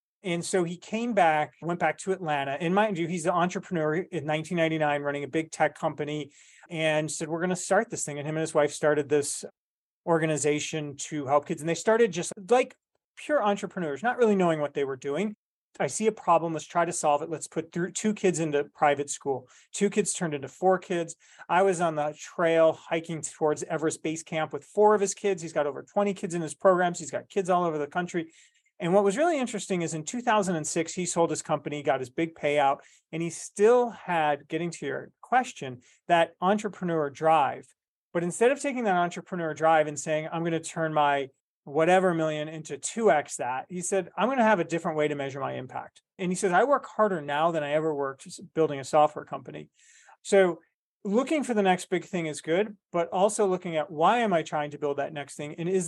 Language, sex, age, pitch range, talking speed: English, male, 30-49, 150-190 Hz, 220 wpm